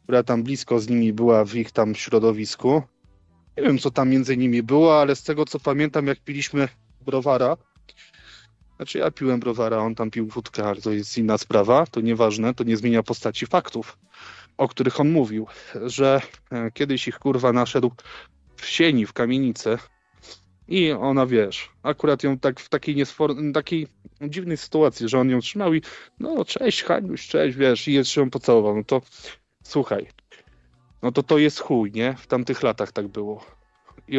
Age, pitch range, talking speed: 20-39, 115-140 Hz, 175 wpm